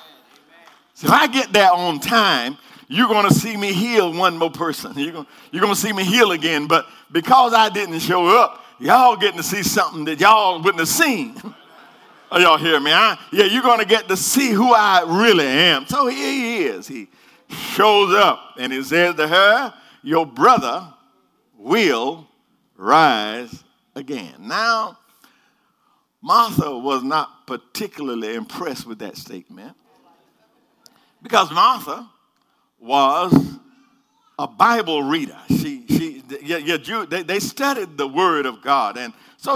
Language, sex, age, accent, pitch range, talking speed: English, male, 50-69, American, 170-245 Hz, 155 wpm